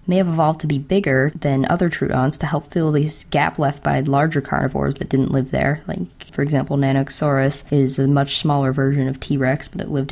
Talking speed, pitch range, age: 220 wpm, 140-170 Hz, 20-39